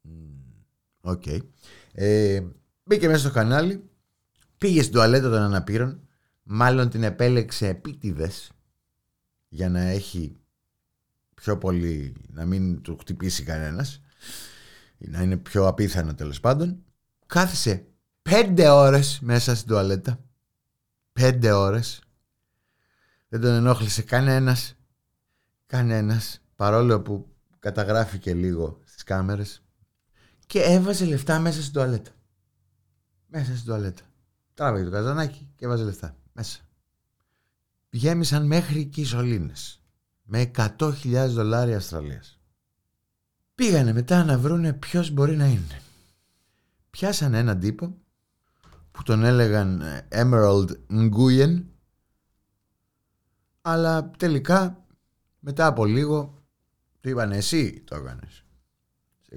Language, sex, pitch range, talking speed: Greek, male, 100-140 Hz, 100 wpm